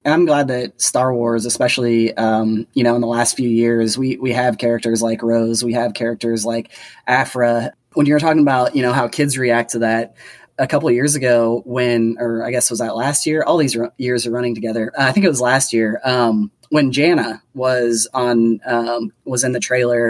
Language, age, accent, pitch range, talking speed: English, 30-49, American, 115-135 Hz, 220 wpm